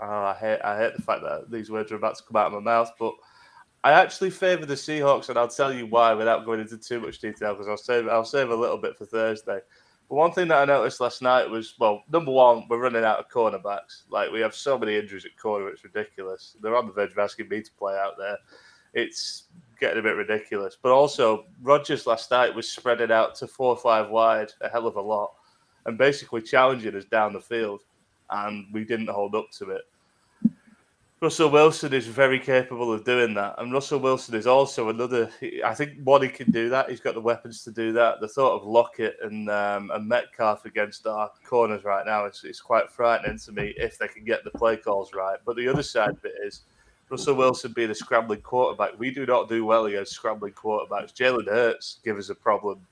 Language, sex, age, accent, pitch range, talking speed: English, male, 20-39, British, 110-135 Hz, 230 wpm